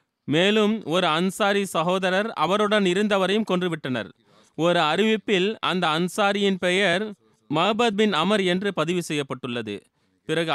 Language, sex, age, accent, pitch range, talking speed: Tamil, male, 30-49, native, 150-190 Hz, 110 wpm